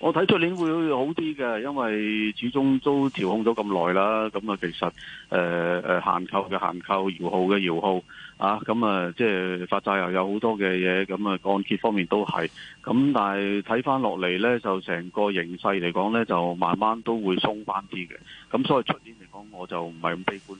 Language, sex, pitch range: Chinese, male, 90-110 Hz